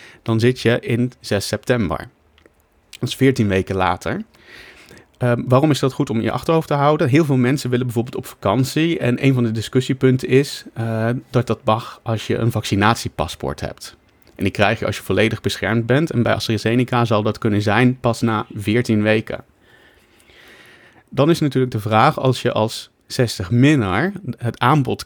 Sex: male